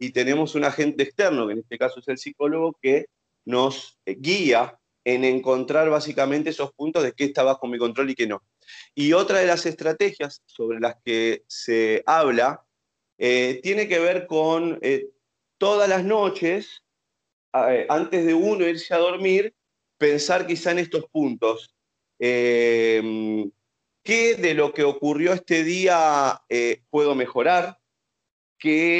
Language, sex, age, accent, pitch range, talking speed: Spanish, male, 30-49, Argentinian, 130-175 Hz, 150 wpm